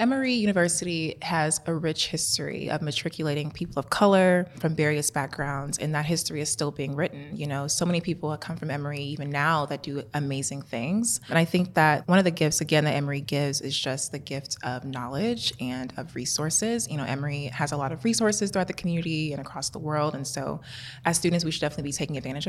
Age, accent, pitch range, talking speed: 20-39, American, 140-170 Hz, 220 wpm